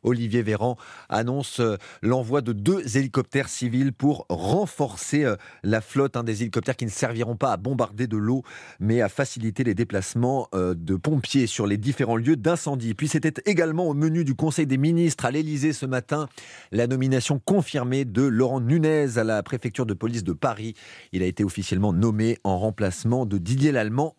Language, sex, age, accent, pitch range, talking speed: French, male, 30-49, French, 120-160 Hz, 175 wpm